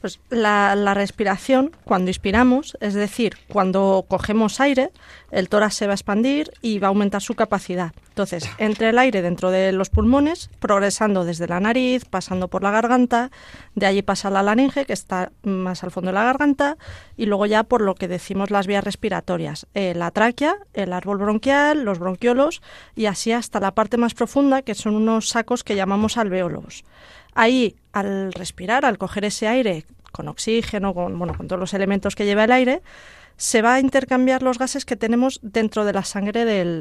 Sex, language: female, Spanish